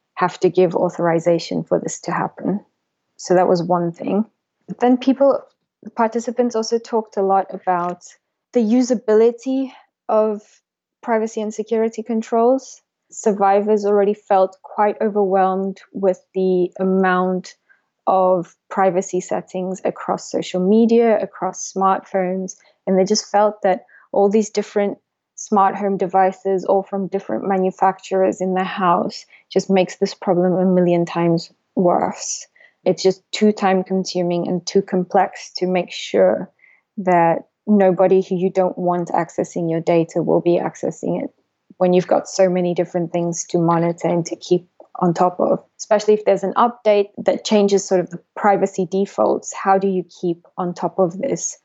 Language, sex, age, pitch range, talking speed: English, female, 20-39, 180-210 Hz, 150 wpm